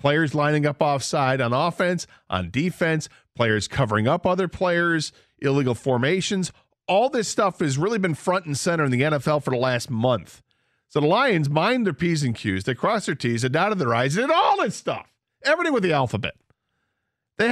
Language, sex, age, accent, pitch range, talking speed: English, male, 40-59, American, 125-170 Hz, 195 wpm